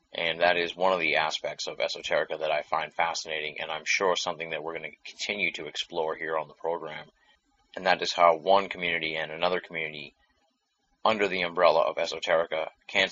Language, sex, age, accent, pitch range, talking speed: English, male, 30-49, American, 80-90 Hz, 195 wpm